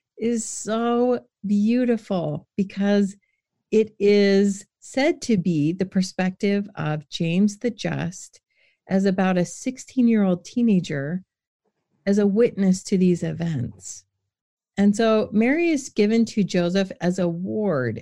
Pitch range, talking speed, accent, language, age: 170-210 Hz, 120 wpm, American, English, 40-59